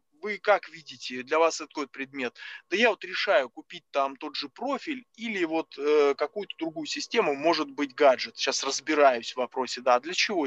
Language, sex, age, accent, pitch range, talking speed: Russian, male, 20-39, native, 135-180 Hz, 185 wpm